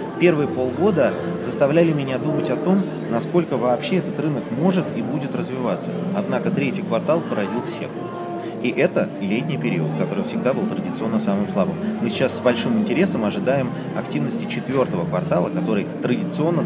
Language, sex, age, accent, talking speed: Russian, male, 30-49, native, 150 wpm